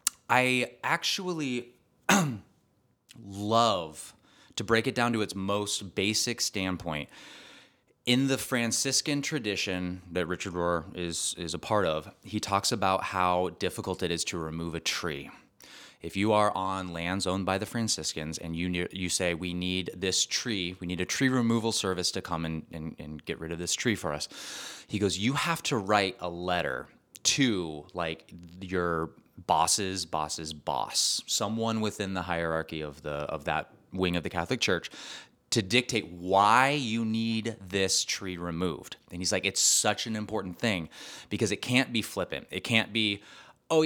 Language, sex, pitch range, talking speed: English, male, 90-115 Hz, 170 wpm